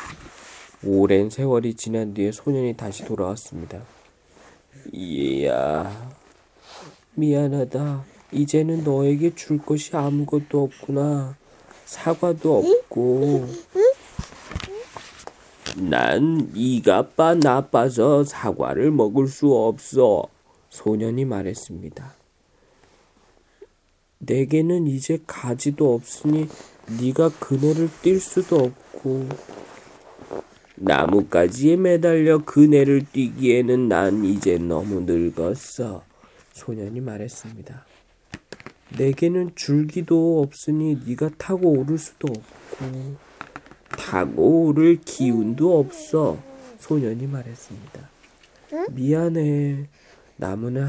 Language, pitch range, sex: Korean, 120-155 Hz, male